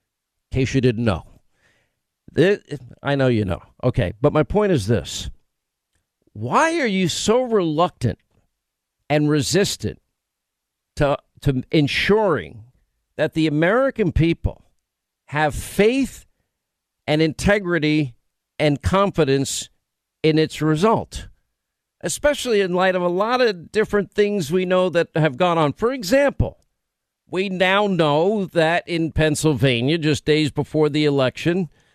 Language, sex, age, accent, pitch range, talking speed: English, male, 50-69, American, 135-180 Hz, 125 wpm